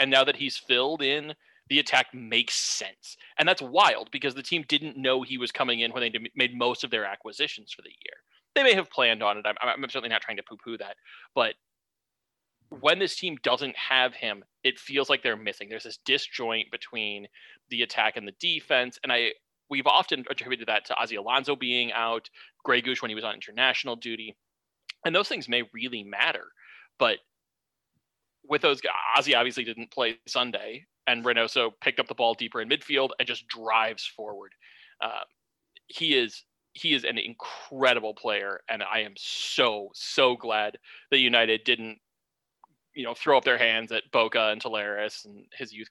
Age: 30-49